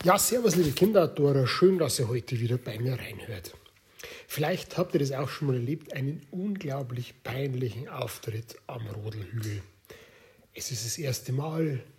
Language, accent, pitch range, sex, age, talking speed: German, German, 120-160 Hz, male, 60-79, 160 wpm